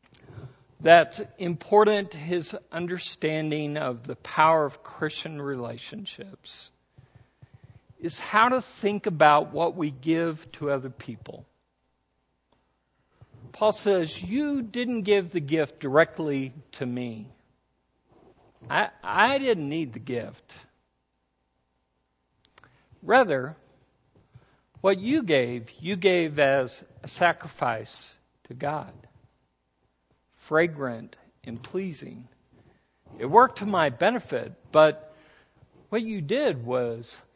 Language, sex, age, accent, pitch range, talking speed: English, male, 60-79, American, 125-175 Hz, 100 wpm